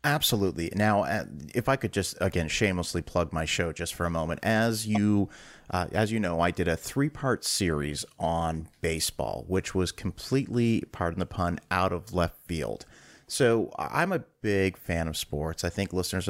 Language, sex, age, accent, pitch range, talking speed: English, male, 30-49, American, 85-110 Hz, 175 wpm